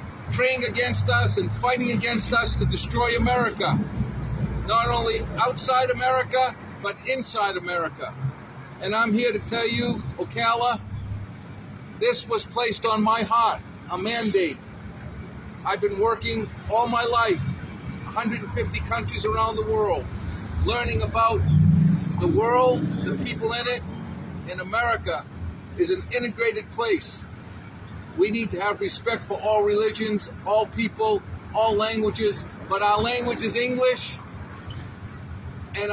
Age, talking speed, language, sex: 50-69, 125 wpm, English, male